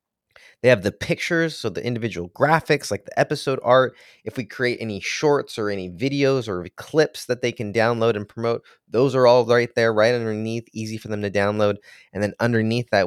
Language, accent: English, American